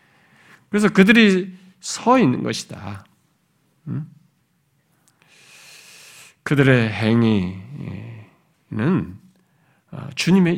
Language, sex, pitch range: Korean, male, 130-180 Hz